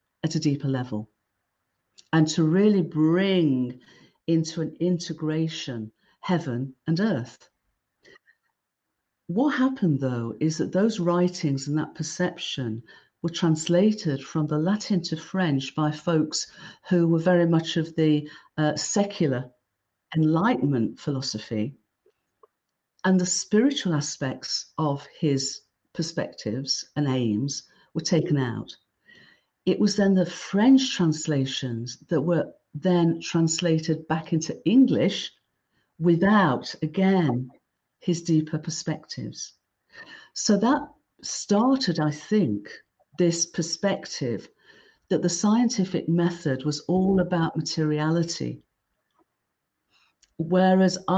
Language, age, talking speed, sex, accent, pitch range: English, 50-69, 105 wpm, female, British, 145-185 Hz